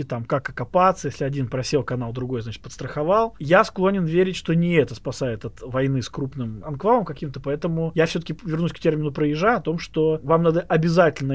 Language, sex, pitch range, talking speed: Russian, male, 140-185 Hz, 190 wpm